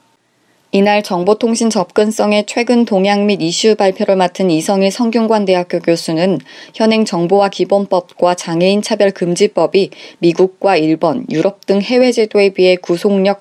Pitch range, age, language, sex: 175-210 Hz, 20-39, Korean, female